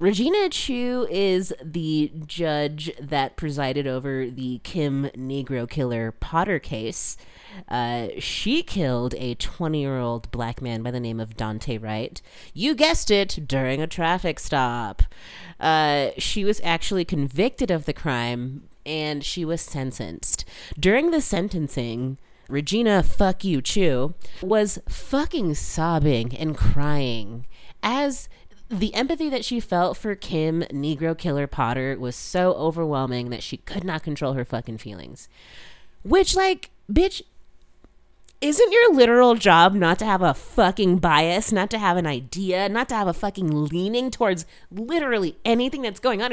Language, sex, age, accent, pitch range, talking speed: English, female, 30-49, American, 135-210 Hz, 140 wpm